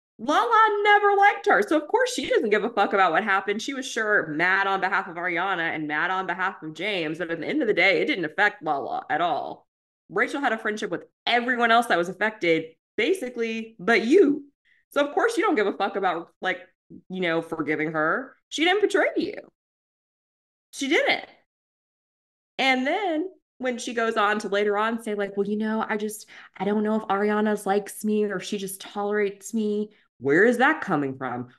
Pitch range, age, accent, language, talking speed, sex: 195-320 Hz, 20-39, American, English, 205 wpm, female